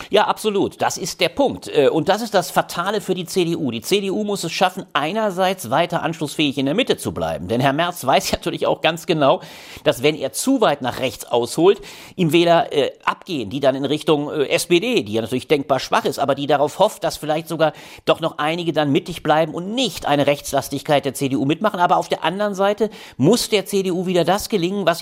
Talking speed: 220 wpm